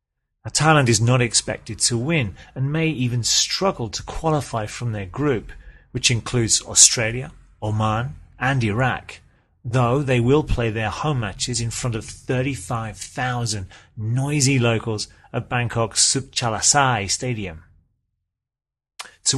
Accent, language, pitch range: British, English, 105-130 Hz